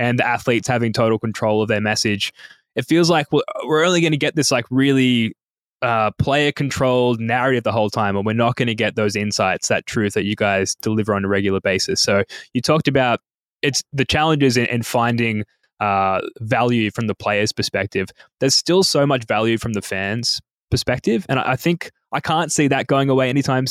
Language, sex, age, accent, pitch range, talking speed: English, male, 10-29, Australian, 110-135 Hz, 200 wpm